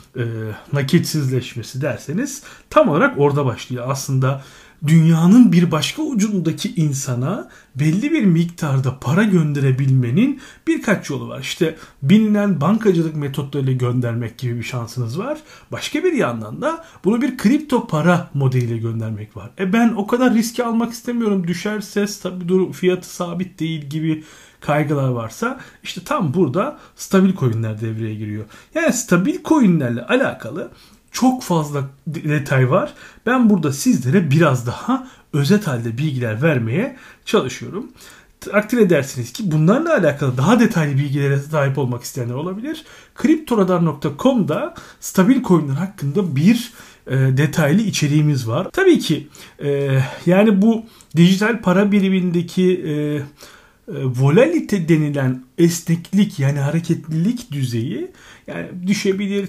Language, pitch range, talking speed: Turkish, 140-210 Hz, 120 wpm